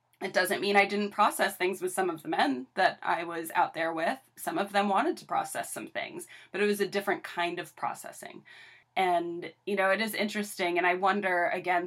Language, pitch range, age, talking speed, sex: English, 165-205 Hz, 20-39, 225 wpm, female